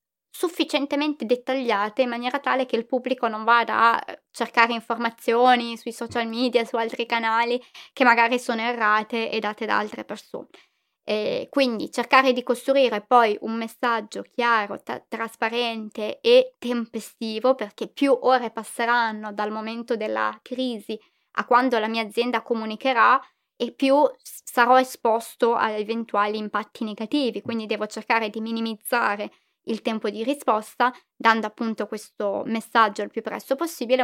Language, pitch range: Italian, 225-260 Hz